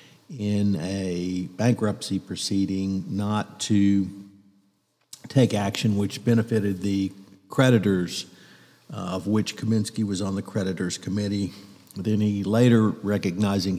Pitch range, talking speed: 95-115 Hz, 110 wpm